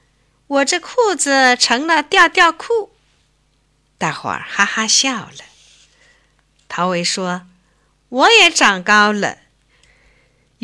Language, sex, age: Chinese, female, 50-69